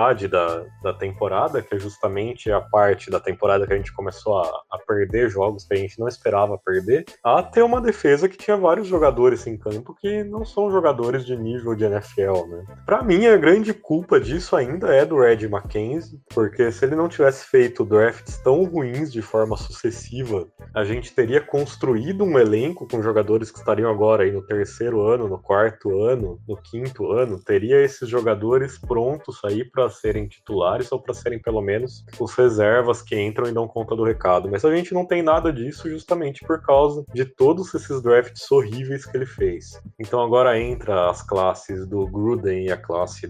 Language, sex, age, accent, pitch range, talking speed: Portuguese, male, 20-39, Brazilian, 105-165 Hz, 190 wpm